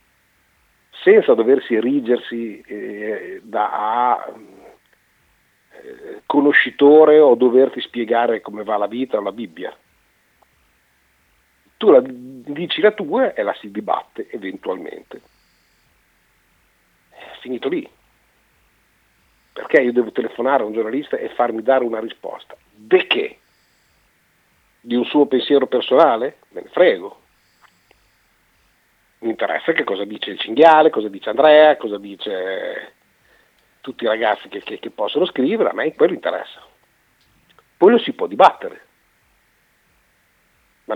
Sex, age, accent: male, 50-69, native